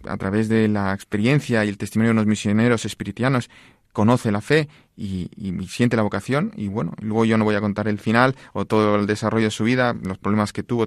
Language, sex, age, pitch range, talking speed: Spanish, male, 30-49, 105-120 Hz, 230 wpm